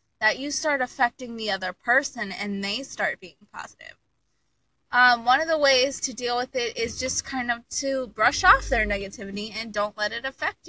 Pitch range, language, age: 210-275 Hz, English, 20-39